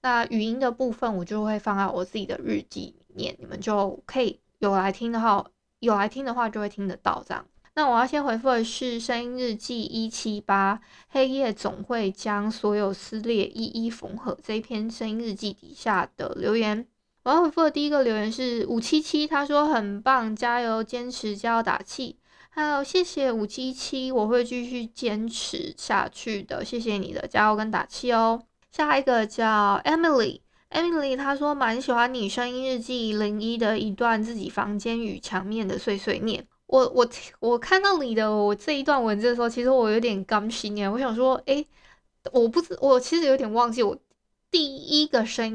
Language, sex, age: Chinese, female, 20-39